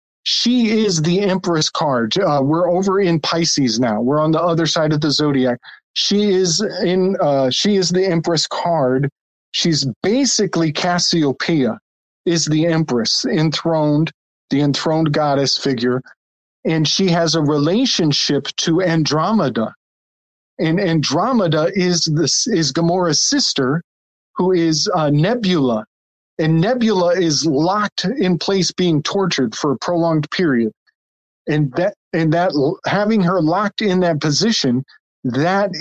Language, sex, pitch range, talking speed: English, male, 145-185 Hz, 135 wpm